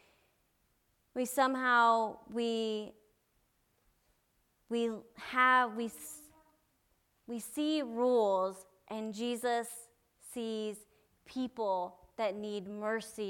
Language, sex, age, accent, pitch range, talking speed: English, female, 30-49, American, 220-260 Hz, 70 wpm